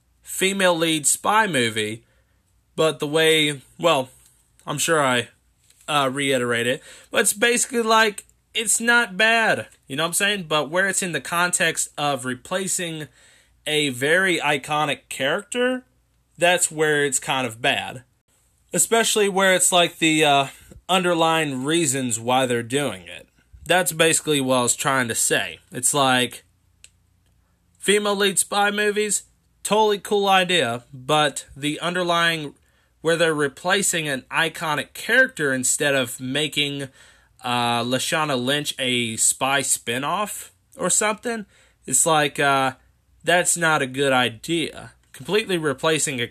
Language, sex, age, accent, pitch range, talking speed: English, male, 20-39, American, 130-175 Hz, 135 wpm